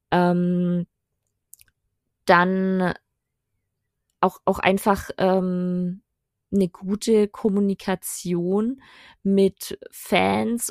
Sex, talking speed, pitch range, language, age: female, 60 wpm, 175-200 Hz, German, 20-39